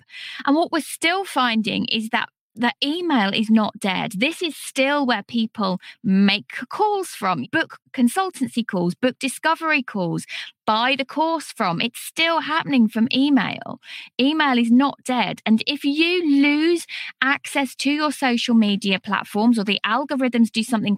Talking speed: 155 wpm